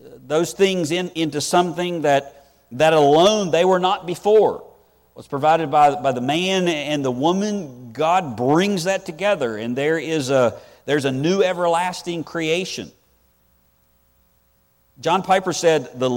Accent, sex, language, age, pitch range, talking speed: American, male, English, 50-69, 105-155 Hz, 145 wpm